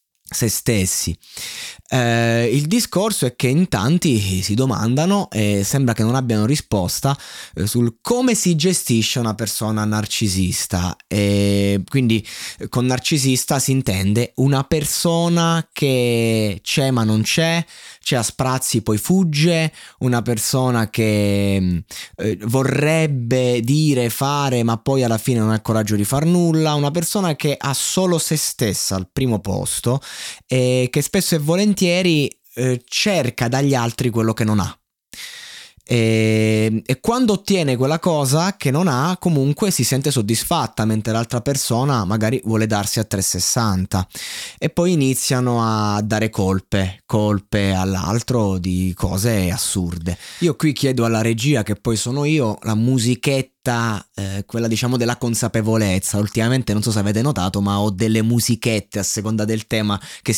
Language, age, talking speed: Italian, 20-39, 145 wpm